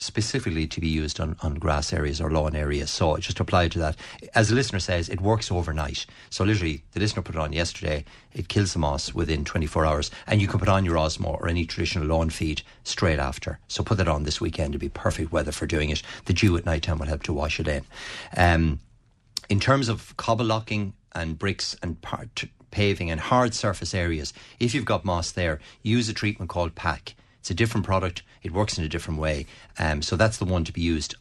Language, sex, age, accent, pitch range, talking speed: English, male, 60-79, Irish, 80-105 Hz, 225 wpm